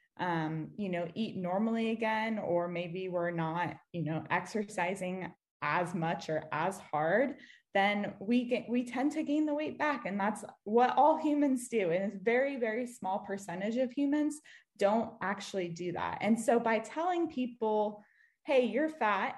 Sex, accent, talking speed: female, American, 165 wpm